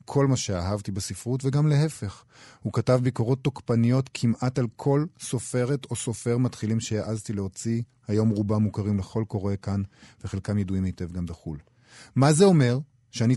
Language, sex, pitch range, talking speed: Hebrew, male, 100-125 Hz, 155 wpm